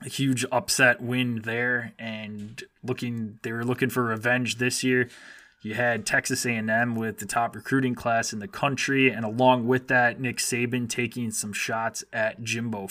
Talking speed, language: 170 wpm, English